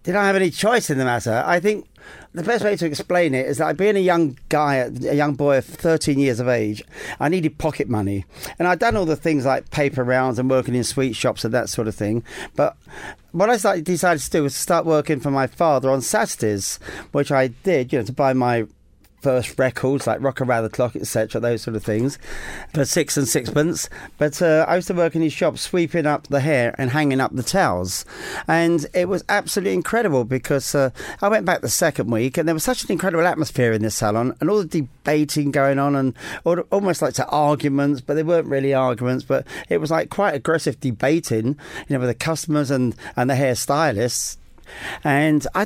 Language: English